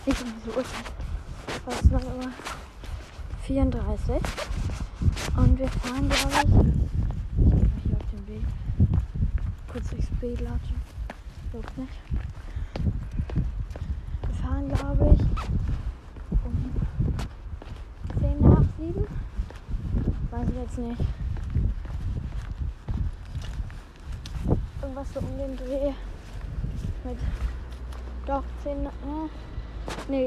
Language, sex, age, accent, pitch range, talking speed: German, female, 20-39, German, 80-105 Hz, 95 wpm